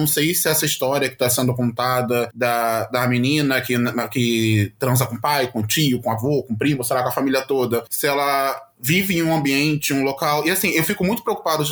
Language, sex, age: Portuguese, male, 20-39